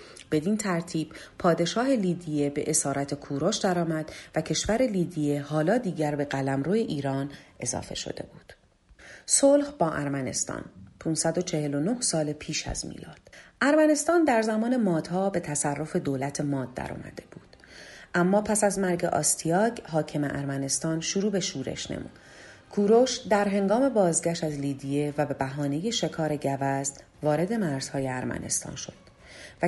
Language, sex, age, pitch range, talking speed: Persian, female, 40-59, 145-195 Hz, 135 wpm